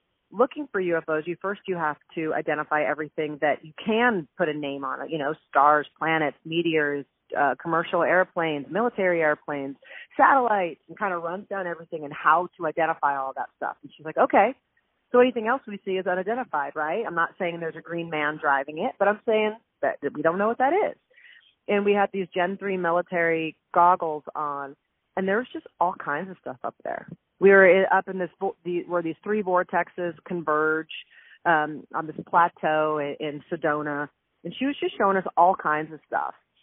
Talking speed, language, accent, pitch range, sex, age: 195 wpm, English, American, 155-195 Hz, female, 30-49